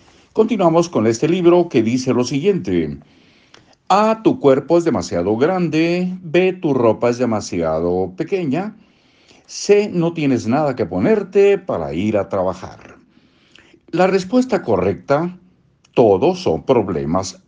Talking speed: 125 wpm